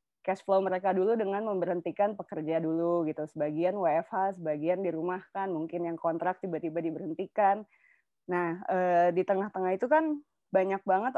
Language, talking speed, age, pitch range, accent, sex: Indonesian, 140 wpm, 20-39, 170-200 Hz, native, female